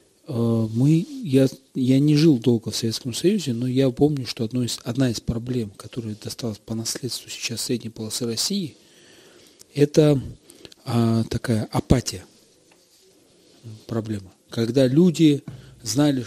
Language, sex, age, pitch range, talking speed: Russian, male, 40-59, 115-140 Hz, 125 wpm